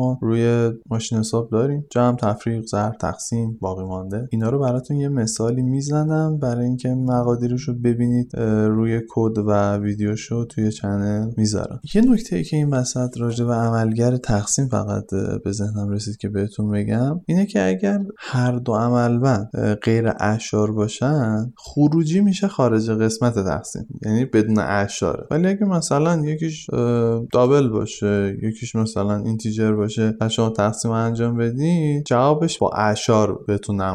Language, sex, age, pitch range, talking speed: Persian, male, 20-39, 105-140 Hz, 145 wpm